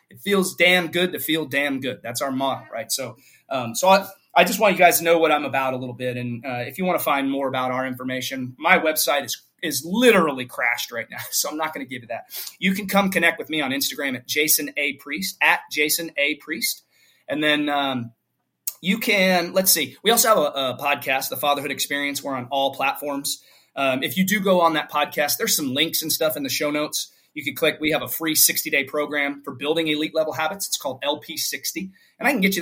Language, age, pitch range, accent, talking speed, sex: English, 30-49, 135-170 Hz, American, 245 wpm, male